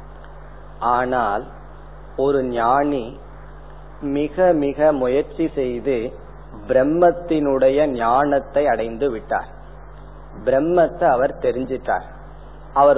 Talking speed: 70 wpm